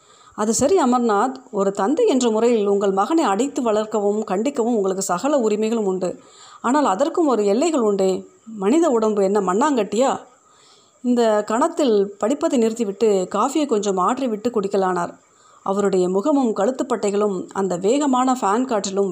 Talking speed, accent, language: 125 wpm, native, Tamil